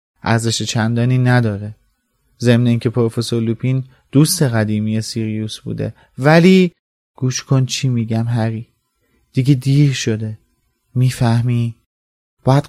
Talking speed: 110 wpm